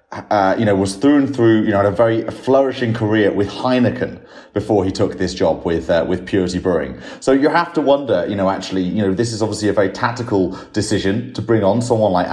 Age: 30-49